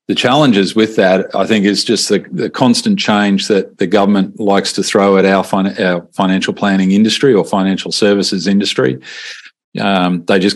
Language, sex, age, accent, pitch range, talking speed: English, male, 40-59, Australian, 95-105 Hz, 180 wpm